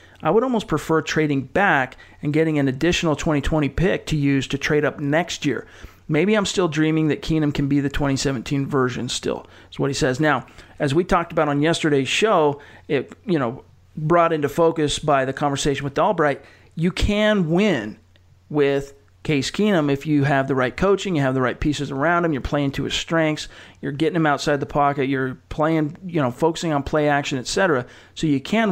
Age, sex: 40-59, male